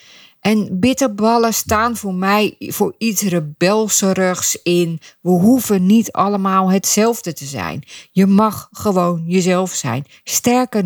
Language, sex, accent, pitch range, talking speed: Dutch, female, Dutch, 150-200 Hz, 120 wpm